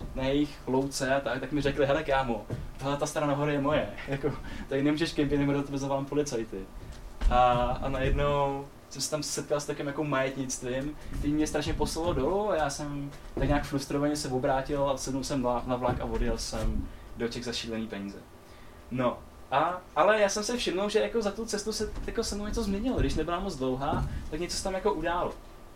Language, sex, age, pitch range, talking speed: Czech, male, 10-29, 130-160 Hz, 205 wpm